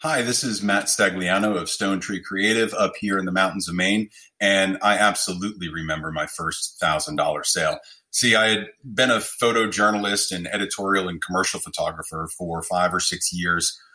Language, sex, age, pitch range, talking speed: English, male, 30-49, 90-110 Hz, 175 wpm